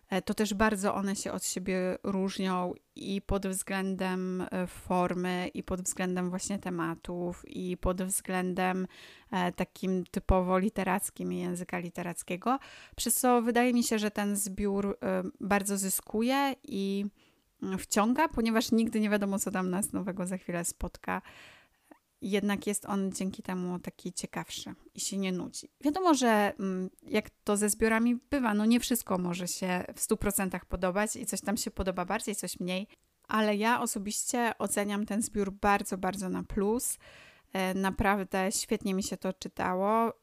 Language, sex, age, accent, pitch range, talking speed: Polish, female, 20-39, native, 185-210 Hz, 150 wpm